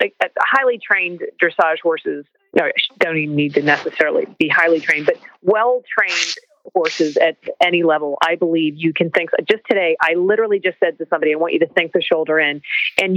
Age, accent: 40-59, American